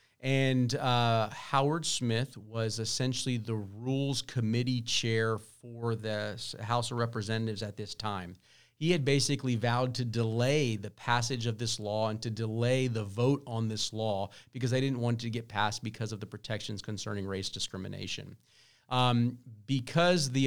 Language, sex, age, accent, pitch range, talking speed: English, male, 40-59, American, 115-135 Hz, 160 wpm